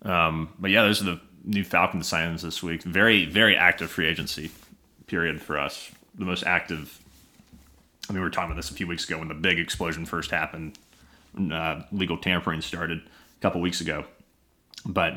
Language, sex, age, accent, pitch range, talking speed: English, male, 30-49, American, 85-100 Hz, 190 wpm